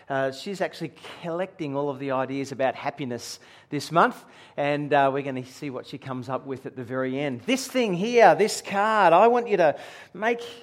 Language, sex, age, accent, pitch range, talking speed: English, male, 40-59, Australian, 165-200 Hz, 210 wpm